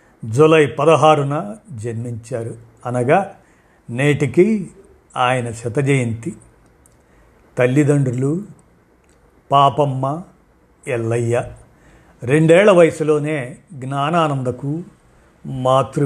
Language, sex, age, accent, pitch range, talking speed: Telugu, male, 50-69, native, 125-155 Hz, 50 wpm